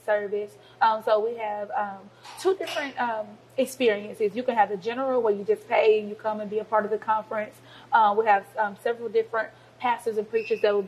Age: 30-49